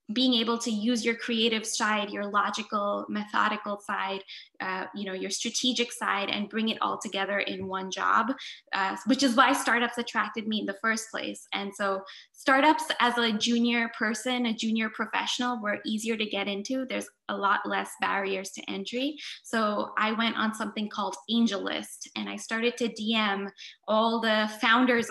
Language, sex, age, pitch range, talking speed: English, female, 20-39, 200-235 Hz, 175 wpm